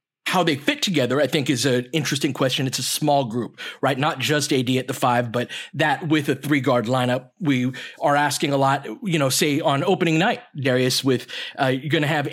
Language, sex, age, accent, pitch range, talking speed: English, male, 30-49, American, 130-160 Hz, 225 wpm